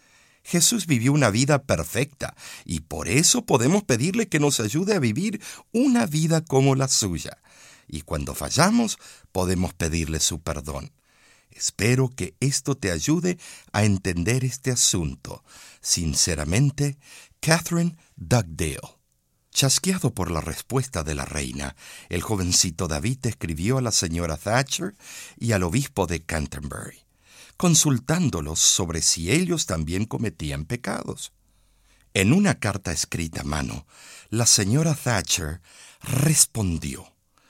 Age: 60-79